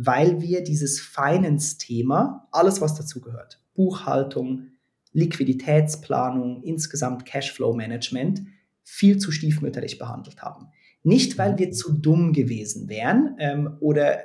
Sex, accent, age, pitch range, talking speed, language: male, German, 30-49, 140-165 Hz, 110 wpm, German